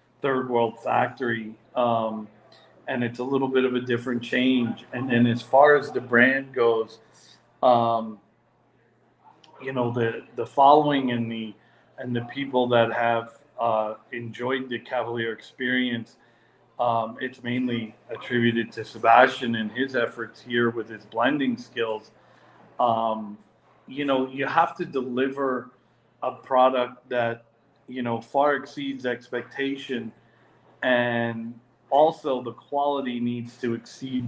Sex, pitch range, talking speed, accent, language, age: male, 115-130 Hz, 130 wpm, American, English, 40-59